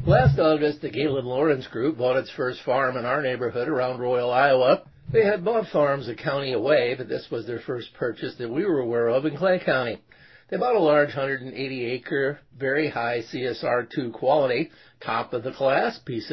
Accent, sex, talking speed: American, male, 175 wpm